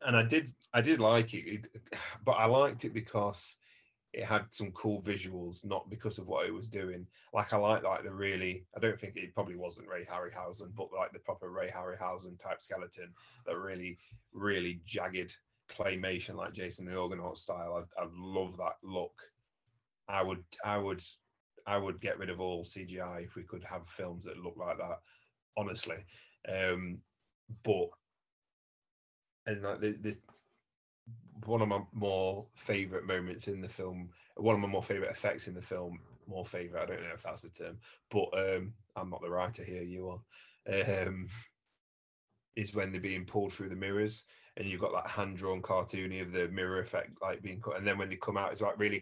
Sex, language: male, English